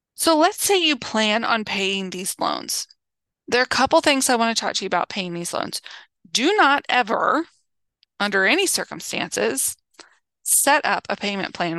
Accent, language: American, English